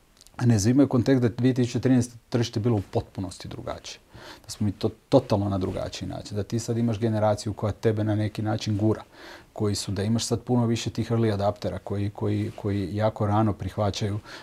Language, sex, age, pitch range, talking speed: Croatian, male, 40-59, 110-125 Hz, 190 wpm